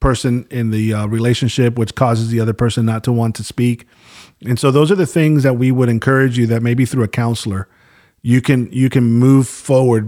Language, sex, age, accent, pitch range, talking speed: English, male, 40-59, American, 110-130 Hz, 220 wpm